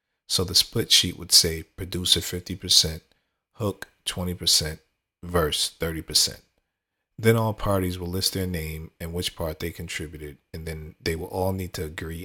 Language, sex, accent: English, male, American